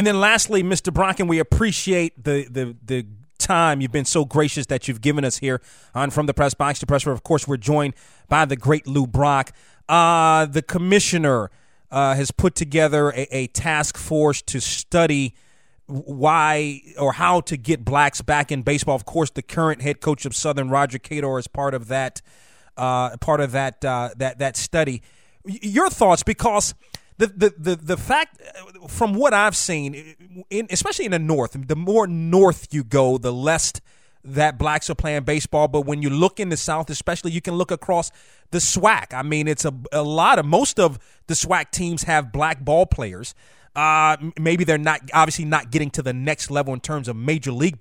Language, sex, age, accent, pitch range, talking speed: English, male, 30-49, American, 135-165 Hz, 195 wpm